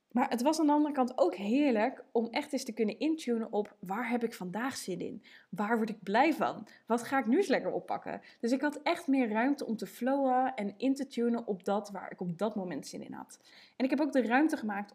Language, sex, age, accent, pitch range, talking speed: Dutch, female, 20-39, Dutch, 195-260 Hz, 255 wpm